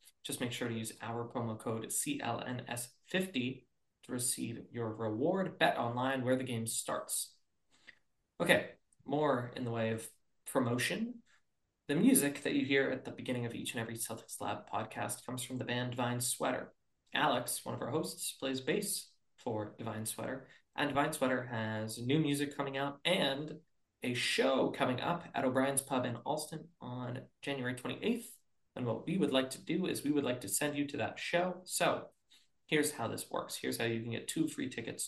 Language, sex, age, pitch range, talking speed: English, male, 20-39, 115-145 Hz, 185 wpm